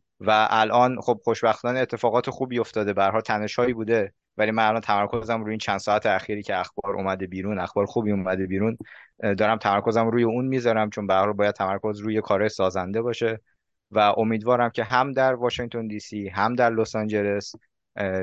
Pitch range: 105-120 Hz